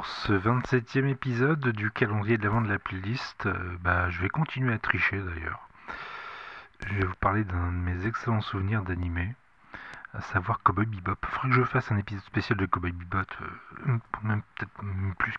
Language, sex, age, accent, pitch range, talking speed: French, male, 40-59, French, 95-115 Hz, 185 wpm